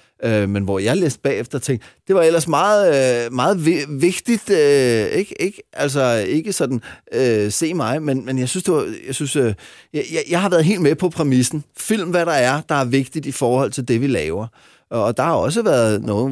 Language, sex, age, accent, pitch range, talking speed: Danish, male, 30-49, native, 110-145 Hz, 195 wpm